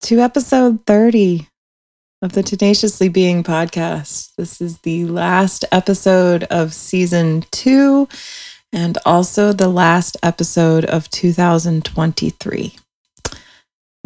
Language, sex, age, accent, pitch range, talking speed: English, female, 30-49, American, 160-190 Hz, 100 wpm